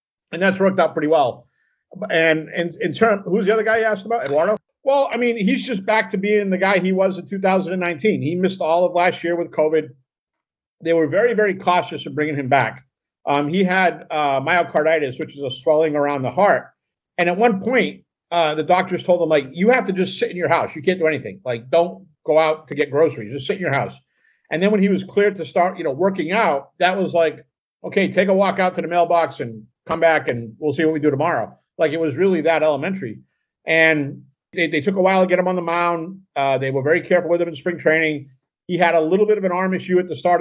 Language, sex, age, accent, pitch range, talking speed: English, male, 50-69, American, 155-190 Hz, 250 wpm